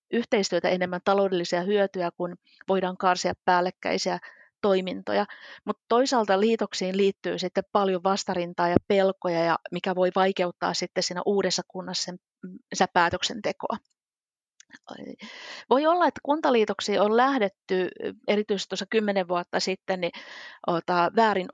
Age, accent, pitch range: 30-49, native, 180-200 Hz